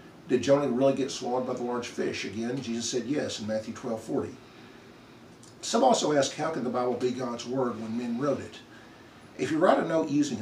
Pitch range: 110-130 Hz